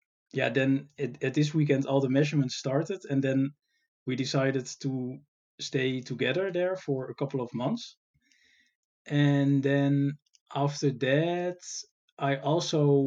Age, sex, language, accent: 20-39, male, English, Dutch